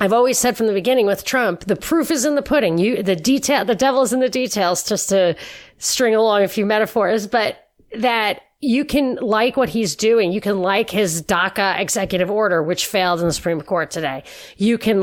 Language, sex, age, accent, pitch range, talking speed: English, female, 40-59, American, 185-240 Hz, 210 wpm